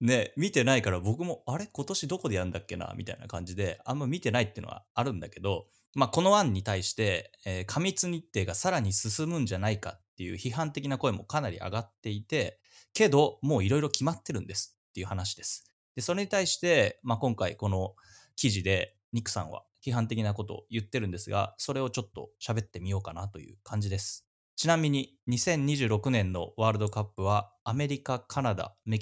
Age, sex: 20-39, male